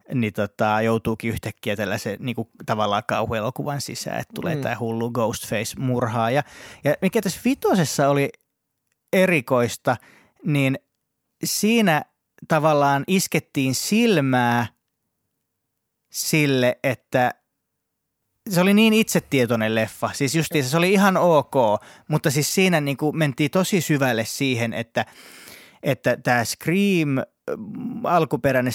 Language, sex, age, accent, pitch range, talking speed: Finnish, male, 30-49, native, 120-160 Hz, 110 wpm